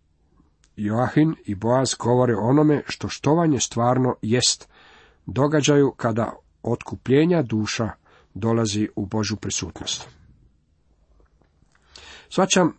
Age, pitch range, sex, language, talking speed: 50-69, 115-145 Hz, male, Croatian, 85 wpm